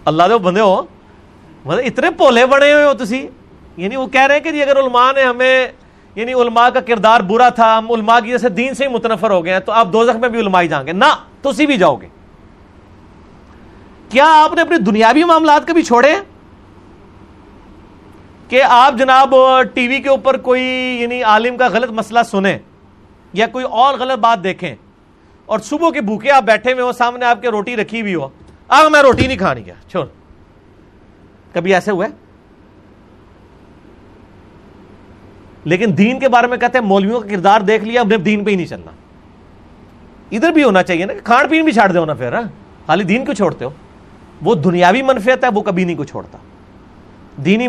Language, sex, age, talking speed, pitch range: Urdu, male, 40-59, 185 wpm, 165-255 Hz